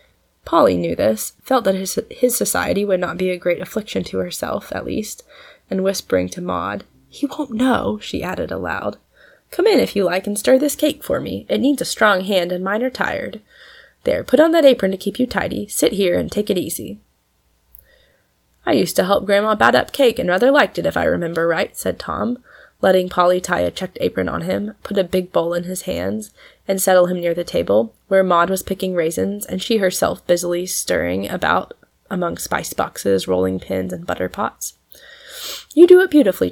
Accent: American